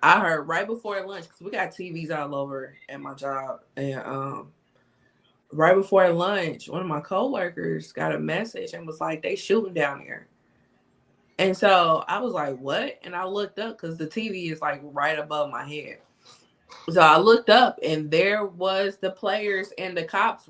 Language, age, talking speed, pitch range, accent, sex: English, 20-39, 185 wpm, 140-195 Hz, American, female